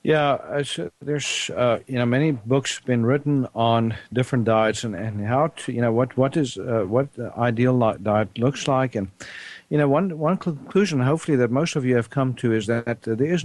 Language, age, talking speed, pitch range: English, 50-69, 205 wpm, 110-135 Hz